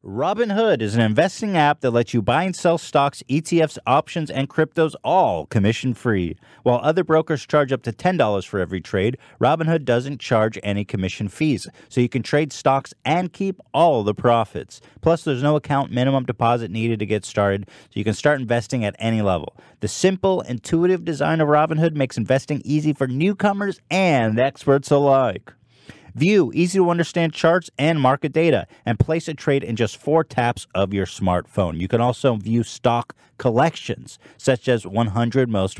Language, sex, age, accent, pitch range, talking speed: English, male, 30-49, American, 110-155 Hz, 180 wpm